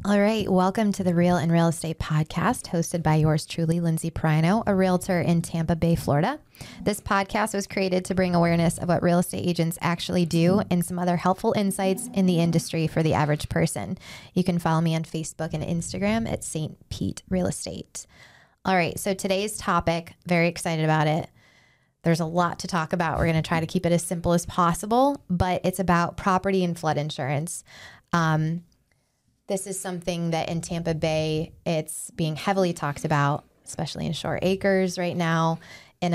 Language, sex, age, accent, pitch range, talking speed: English, female, 20-39, American, 160-185 Hz, 190 wpm